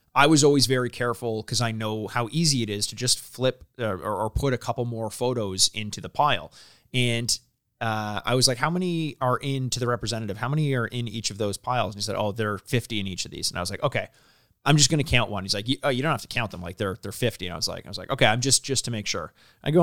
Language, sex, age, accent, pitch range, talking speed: English, male, 30-49, American, 105-130 Hz, 290 wpm